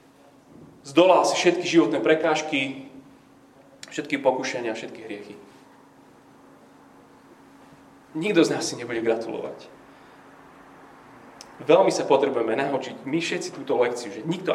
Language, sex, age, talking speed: Slovak, male, 30-49, 105 wpm